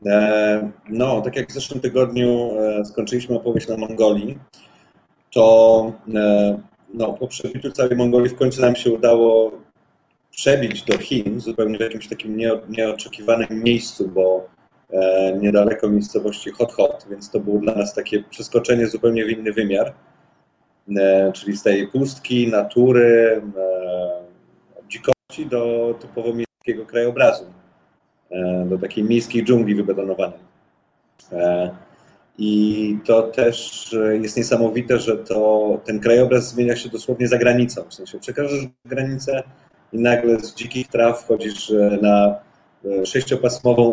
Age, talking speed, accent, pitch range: 30-49, 120 wpm, native, 105-120 Hz